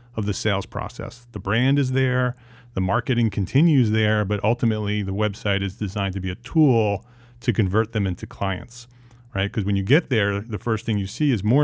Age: 30-49